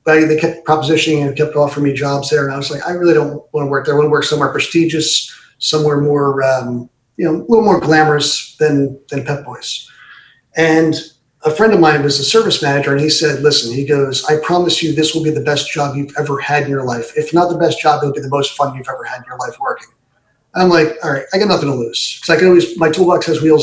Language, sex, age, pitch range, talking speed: English, male, 40-59, 140-170 Hz, 265 wpm